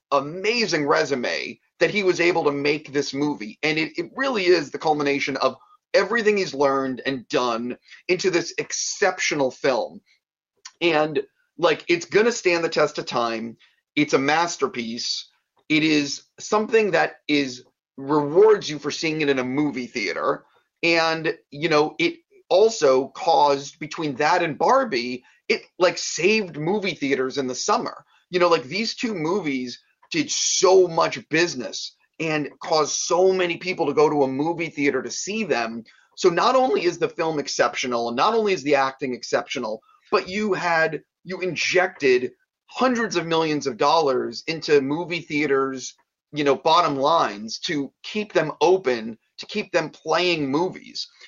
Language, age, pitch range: English, 30-49, 140-190 Hz